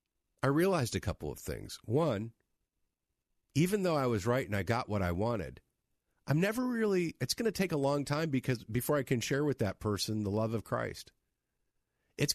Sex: male